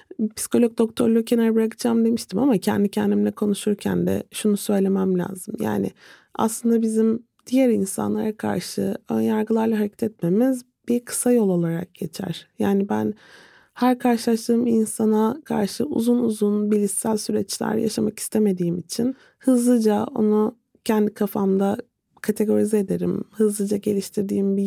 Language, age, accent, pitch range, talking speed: Turkish, 30-49, native, 195-230 Hz, 120 wpm